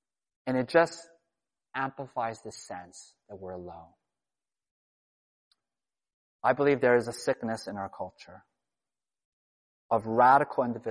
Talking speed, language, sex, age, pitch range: 110 wpm, English, male, 30-49, 120-160 Hz